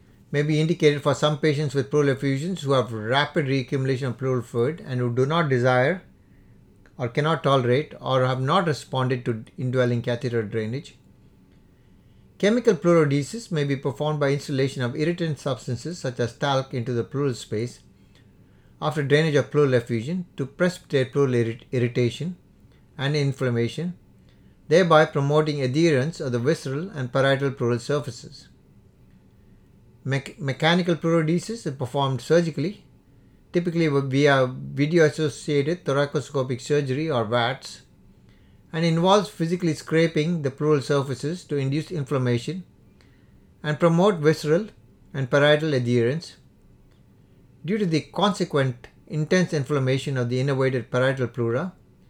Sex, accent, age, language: male, Indian, 60-79, English